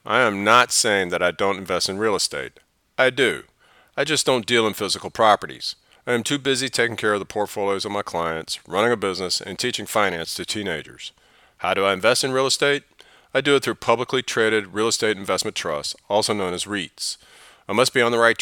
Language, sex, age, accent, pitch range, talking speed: English, male, 40-59, American, 100-120 Hz, 220 wpm